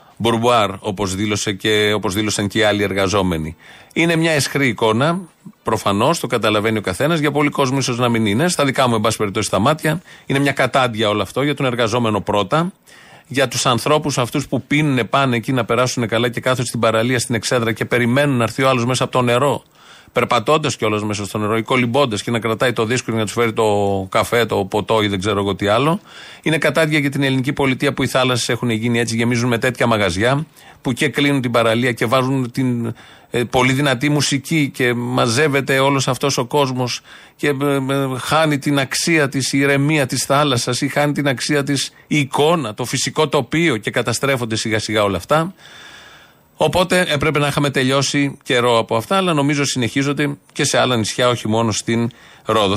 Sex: male